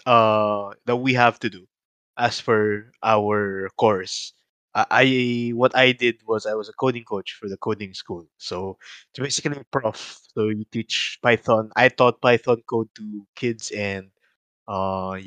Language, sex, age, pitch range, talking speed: English, male, 20-39, 110-130 Hz, 165 wpm